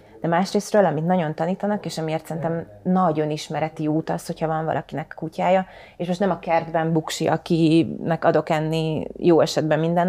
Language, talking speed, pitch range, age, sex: Hungarian, 165 wpm, 160-185 Hz, 30-49, female